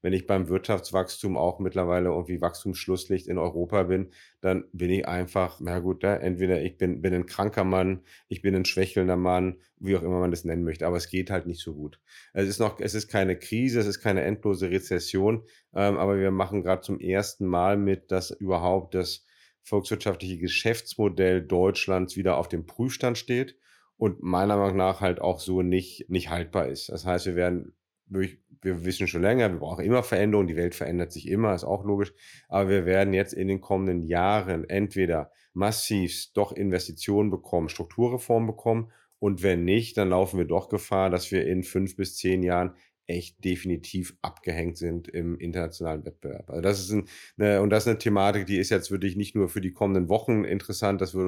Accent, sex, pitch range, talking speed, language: German, male, 90-100 Hz, 195 wpm, German